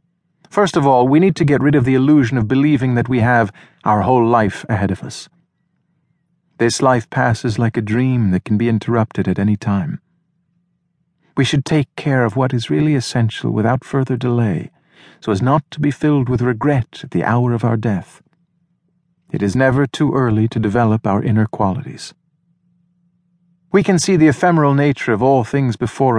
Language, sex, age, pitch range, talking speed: English, male, 50-69, 120-170 Hz, 185 wpm